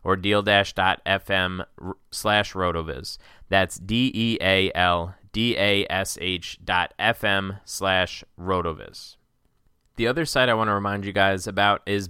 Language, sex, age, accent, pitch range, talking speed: English, male, 20-39, American, 95-110 Hz, 155 wpm